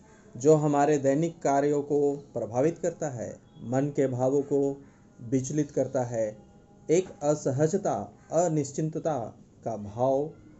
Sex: male